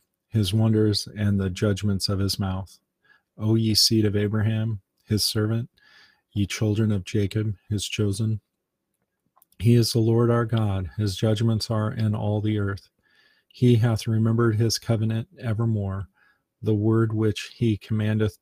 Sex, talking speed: male, 145 wpm